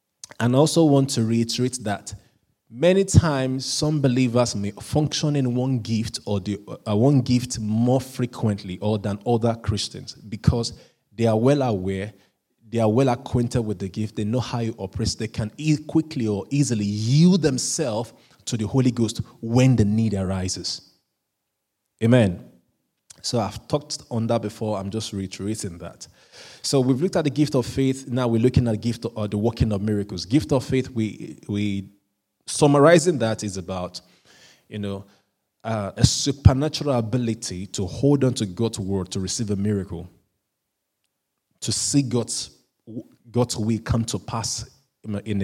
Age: 20-39